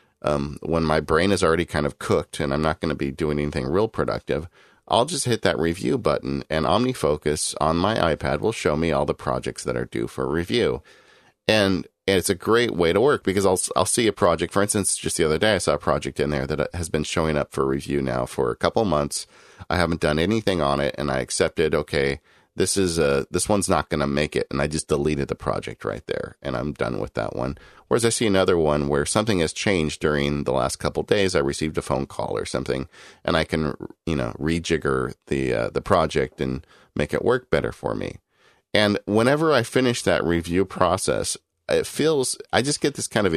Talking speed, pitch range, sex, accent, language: 230 wpm, 70-95 Hz, male, American, English